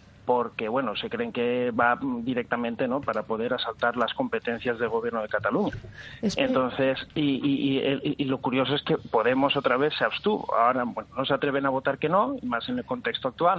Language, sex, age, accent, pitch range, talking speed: Spanish, male, 40-59, Spanish, 125-155 Hz, 200 wpm